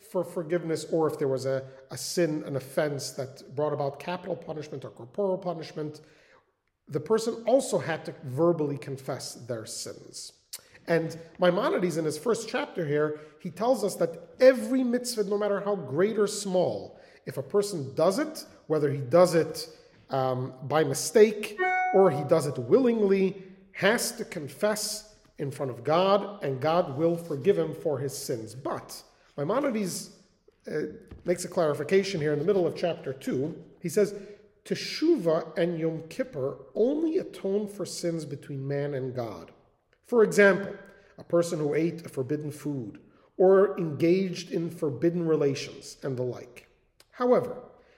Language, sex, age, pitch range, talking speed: English, male, 40-59, 150-205 Hz, 155 wpm